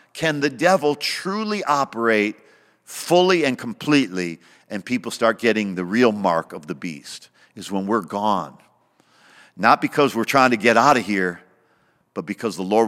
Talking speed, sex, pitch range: 165 wpm, male, 95-120 Hz